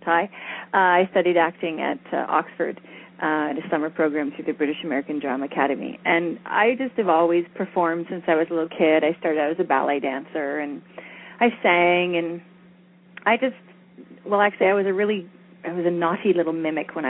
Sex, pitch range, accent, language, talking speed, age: female, 165-225 Hz, American, English, 195 wpm, 30-49